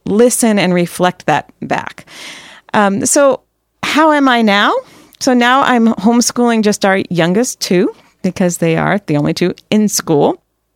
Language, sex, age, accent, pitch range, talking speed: English, female, 40-59, American, 180-235 Hz, 150 wpm